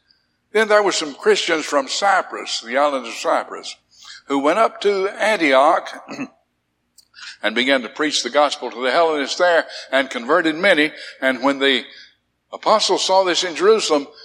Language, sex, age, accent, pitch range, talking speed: English, male, 60-79, American, 105-165 Hz, 155 wpm